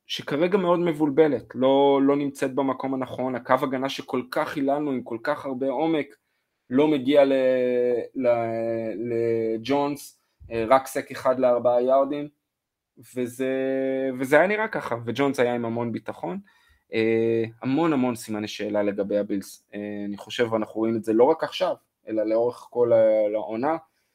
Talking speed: 145 wpm